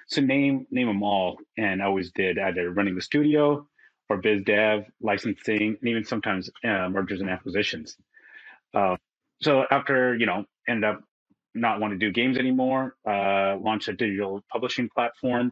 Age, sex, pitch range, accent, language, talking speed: 30-49, male, 95-130 Hz, American, English, 165 wpm